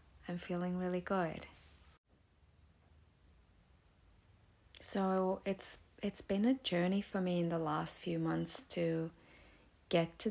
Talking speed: 115 wpm